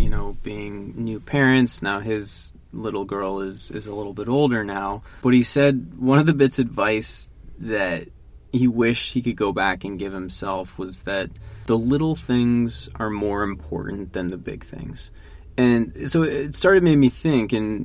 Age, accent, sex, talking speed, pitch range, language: 20-39, American, male, 185 wpm, 100-125 Hz, English